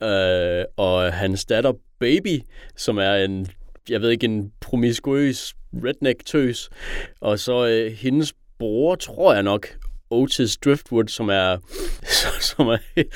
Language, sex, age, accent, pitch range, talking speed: Danish, male, 30-49, native, 95-125 Hz, 115 wpm